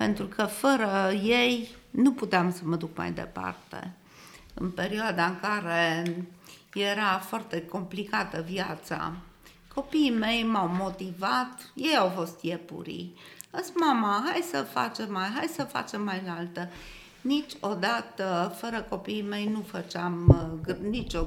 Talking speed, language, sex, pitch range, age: 130 wpm, Romanian, female, 175-260 Hz, 50-69